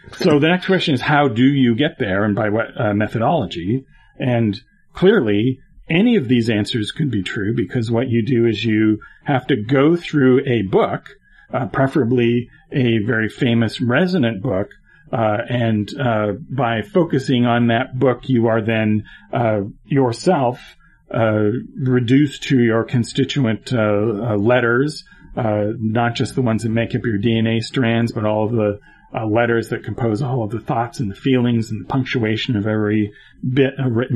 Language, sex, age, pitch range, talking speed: English, male, 40-59, 110-135 Hz, 170 wpm